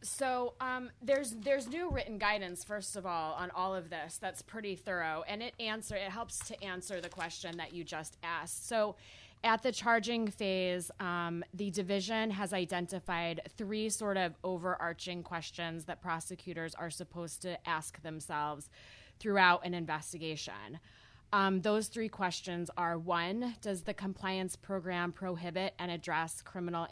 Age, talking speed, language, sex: 20-39, 155 wpm, English, female